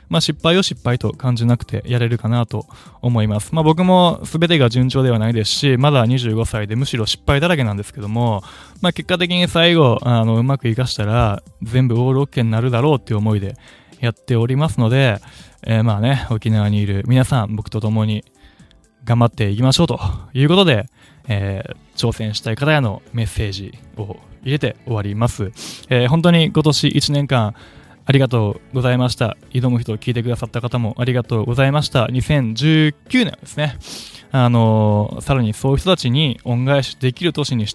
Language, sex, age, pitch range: Japanese, male, 20-39, 110-140 Hz